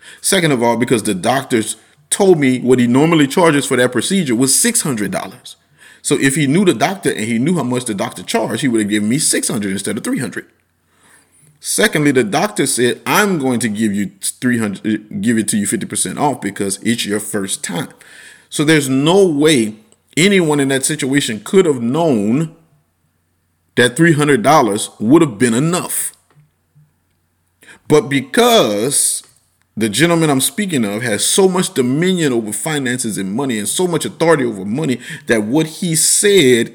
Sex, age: male, 30-49